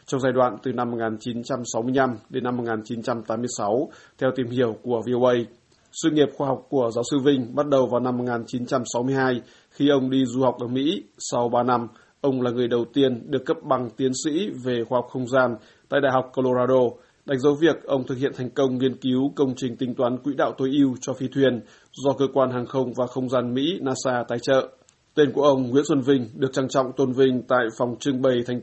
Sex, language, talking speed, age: male, Vietnamese, 220 wpm, 20-39